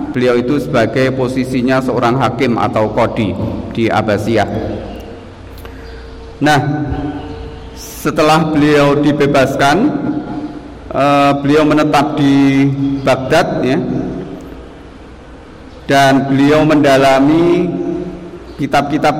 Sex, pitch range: male, 120-145 Hz